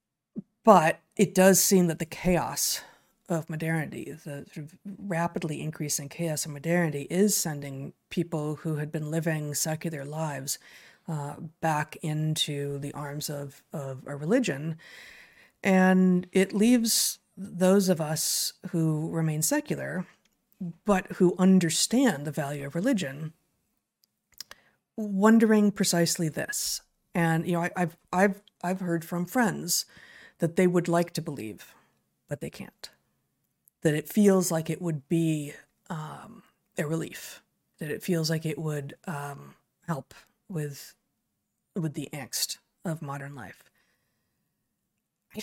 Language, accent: English, American